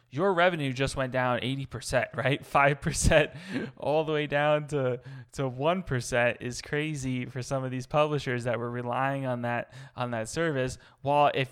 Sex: male